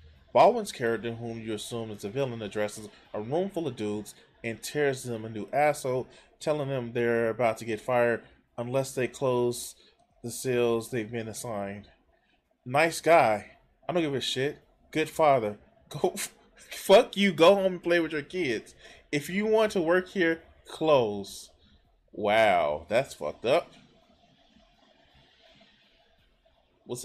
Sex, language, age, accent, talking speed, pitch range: male, English, 20-39, American, 145 wpm, 115-150 Hz